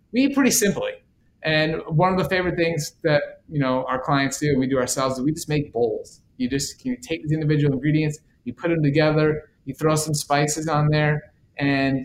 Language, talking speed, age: English, 205 wpm, 30-49